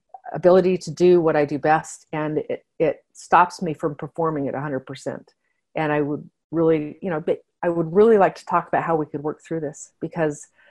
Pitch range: 155-195 Hz